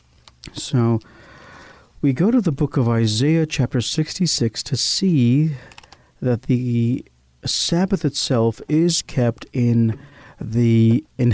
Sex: male